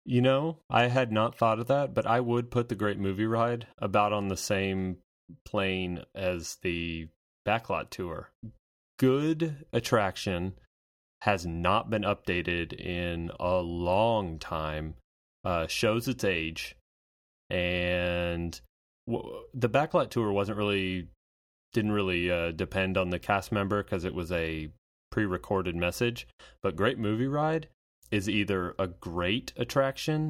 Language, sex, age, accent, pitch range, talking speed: English, male, 30-49, American, 85-110 Hz, 135 wpm